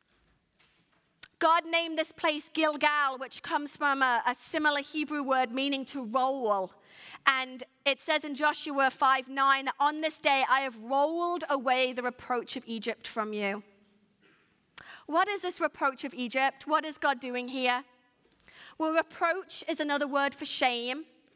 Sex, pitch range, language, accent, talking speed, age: female, 245-315 Hz, English, British, 150 wpm, 30-49